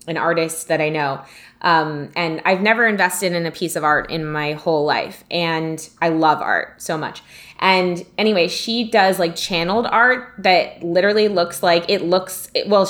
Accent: American